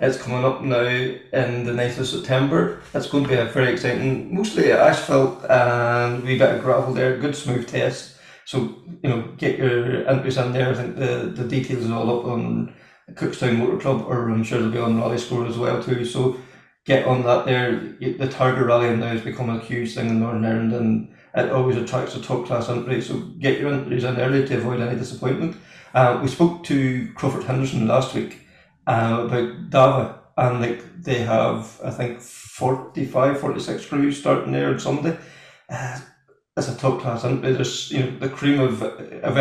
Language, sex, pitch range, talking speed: English, male, 120-130 Hz, 195 wpm